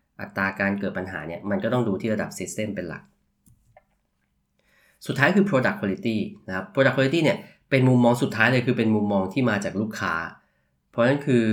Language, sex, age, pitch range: Thai, male, 20-39, 100-125 Hz